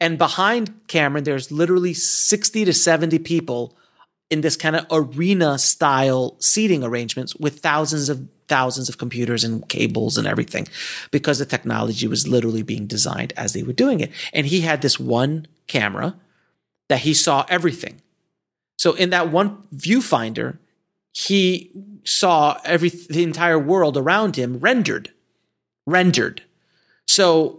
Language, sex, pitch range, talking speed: English, male, 140-180 Hz, 140 wpm